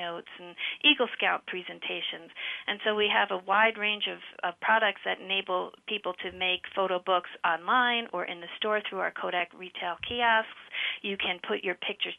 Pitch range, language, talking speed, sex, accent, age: 180-215 Hz, English, 180 wpm, female, American, 50-69